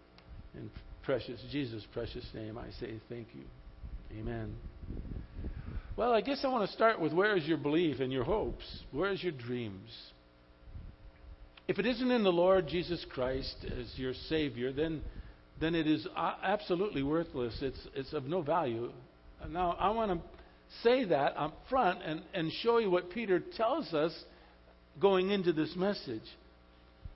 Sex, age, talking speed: male, 50-69, 155 wpm